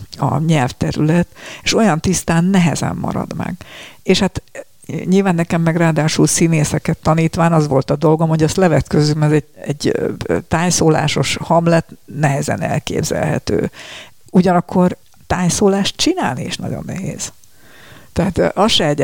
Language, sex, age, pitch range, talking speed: Hungarian, female, 60-79, 150-180 Hz, 125 wpm